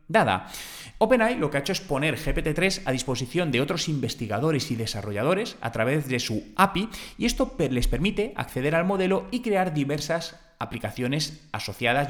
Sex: male